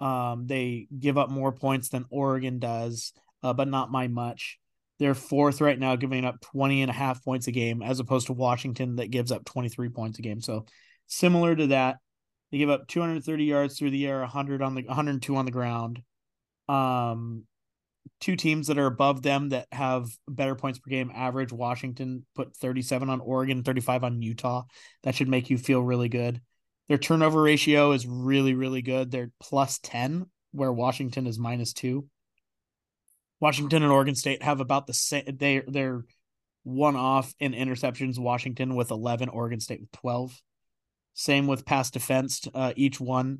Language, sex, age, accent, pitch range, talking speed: English, male, 30-49, American, 125-140 Hz, 180 wpm